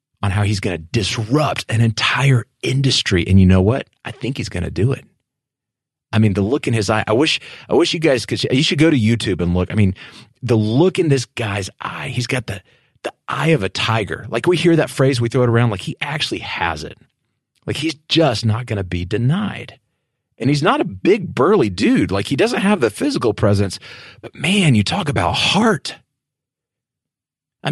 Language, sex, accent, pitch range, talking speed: English, male, American, 105-140 Hz, 210 wpm